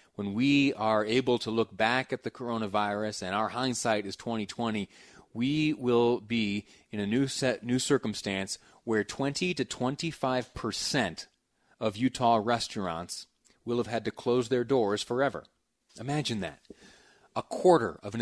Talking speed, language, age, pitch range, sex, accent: 150 wpm, English, 30-49, 120-155 Hz, male, American